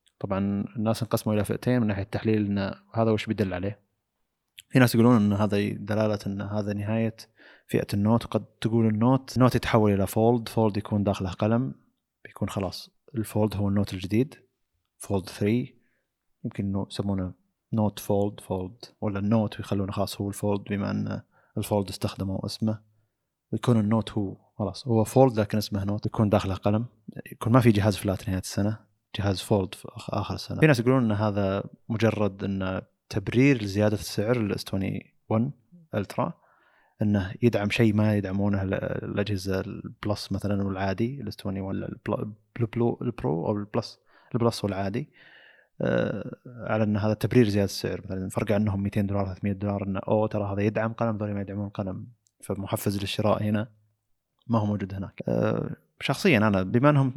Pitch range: 100-115 Hz